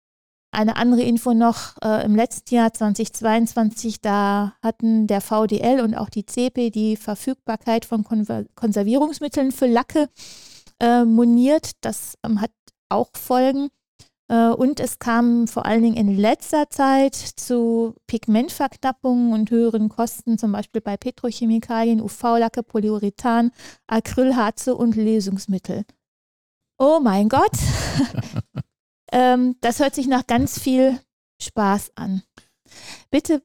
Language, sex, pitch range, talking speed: German, female, 220-255 Hz, 115 wpm